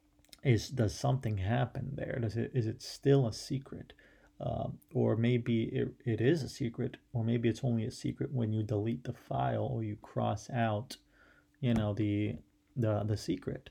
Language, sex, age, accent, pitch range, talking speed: English, male, 30-49, American, 110-130 Hz, 180 wpm